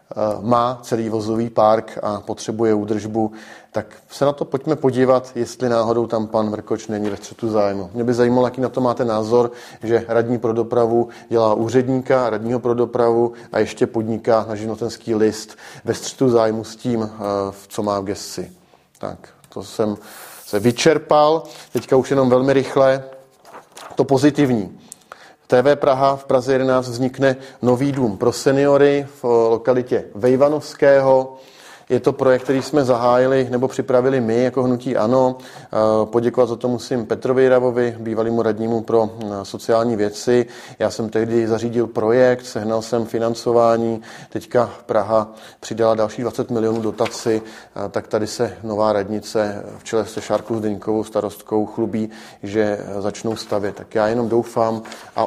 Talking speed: 150 wpm